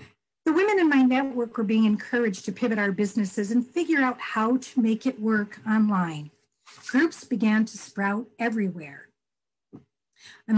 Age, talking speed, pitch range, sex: 50-69, 155 wpm, 215-290 Hz, female